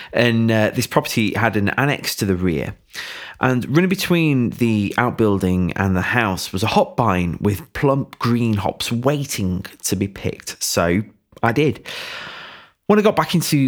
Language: English